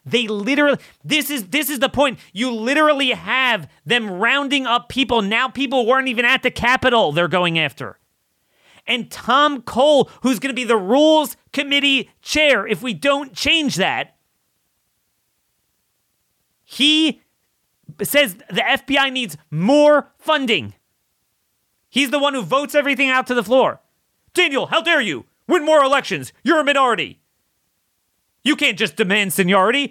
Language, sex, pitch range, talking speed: English, male, 230-290 Hz, 145 wpm